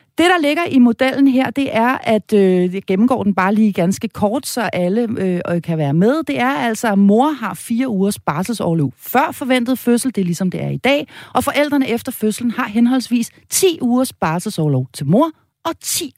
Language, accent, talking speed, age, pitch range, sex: Danish, native, 205 wpm, 40-59, 165-255 Hz, female